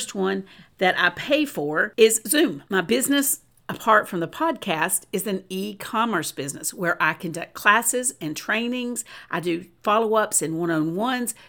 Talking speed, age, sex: 150 wpm, 50-69, female